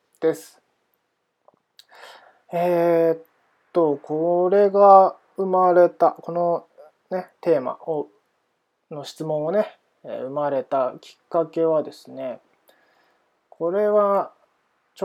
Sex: male